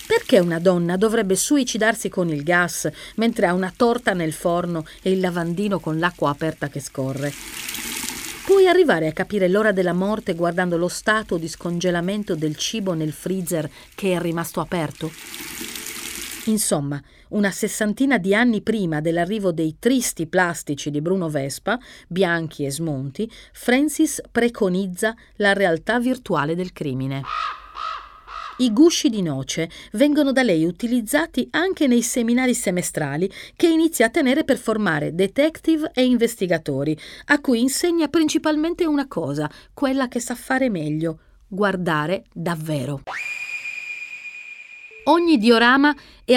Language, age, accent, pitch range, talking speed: Italian, 40-59, native, 170-255 Hz, 130 wpm